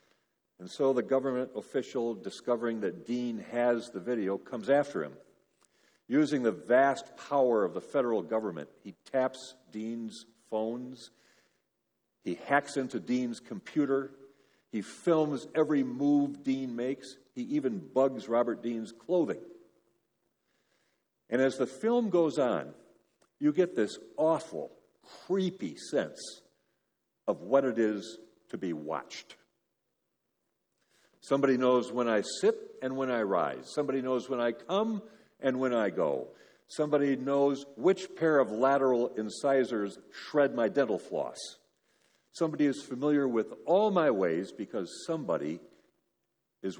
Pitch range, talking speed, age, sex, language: 120-155 Hz, 130 wpm, 50-69, male, English